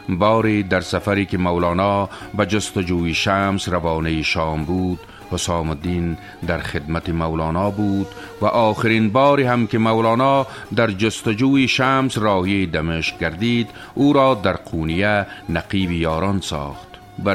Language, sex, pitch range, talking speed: Persian, male, 95-125 Hz, 130 wpm